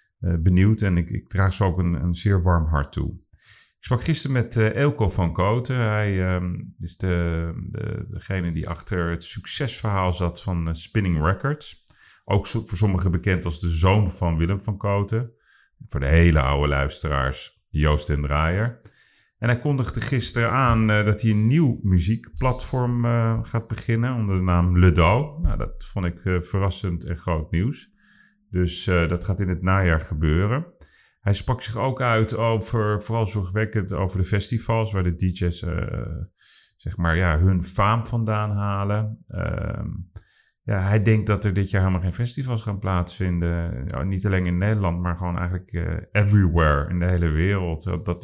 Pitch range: 85-110 Hz